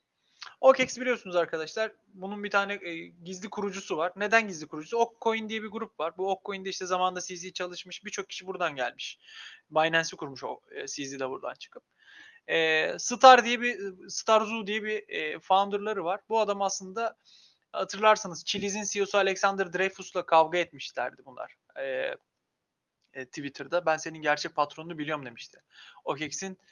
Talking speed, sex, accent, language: 155 wpm, male, native, Turkish